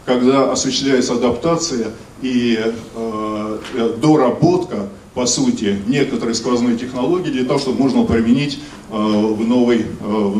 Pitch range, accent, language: 115-150 Hz, native, Russian